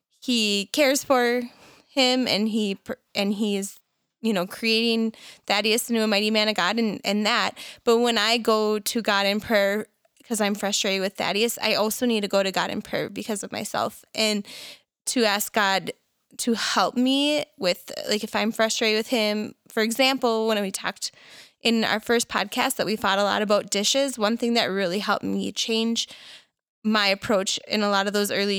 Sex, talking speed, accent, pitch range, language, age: female, 195 wpm, American, 200-235 Hz, English, 20-39